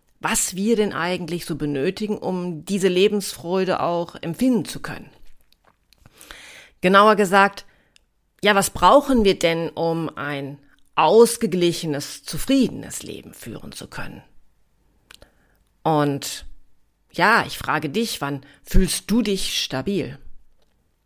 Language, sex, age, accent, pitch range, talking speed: German, female, 40-59, German, 160-205 Hz, 110 wpm